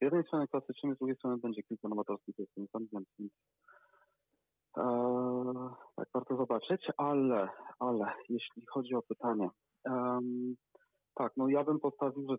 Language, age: Polish, 40-59